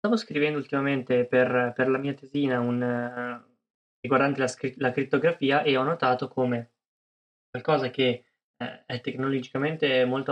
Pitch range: 120-140 Hz